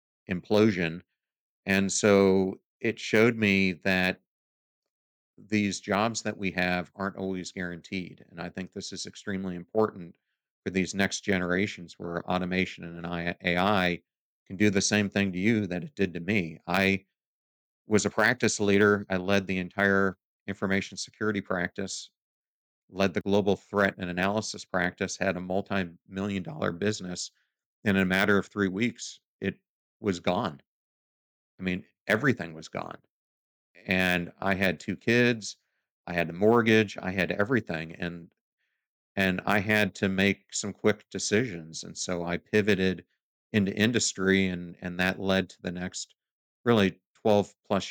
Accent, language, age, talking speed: American, English, 50-69, 145 wpm